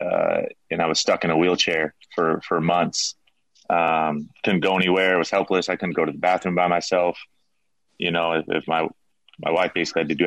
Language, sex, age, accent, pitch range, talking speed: English, male, 30-49, American, 85-90 Hz, 215 wpm